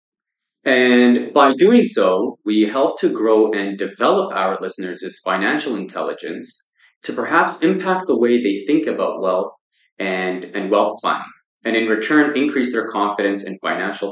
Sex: male